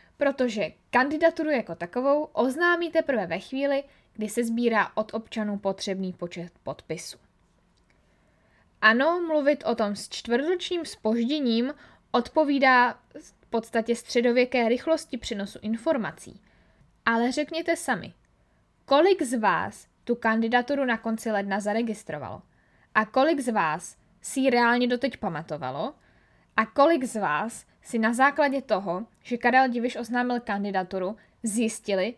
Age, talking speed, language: 20-39, 120 wpm, Czech